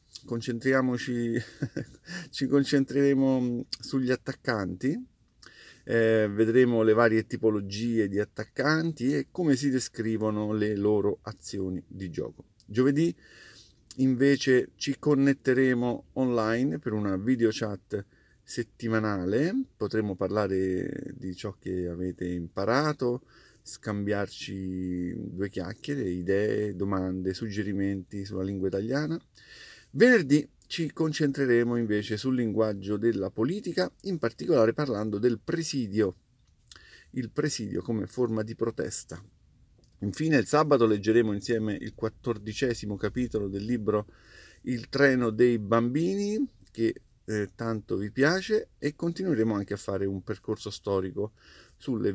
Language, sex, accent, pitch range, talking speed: Italian, male, native, 105-135 Hz, 110 wpm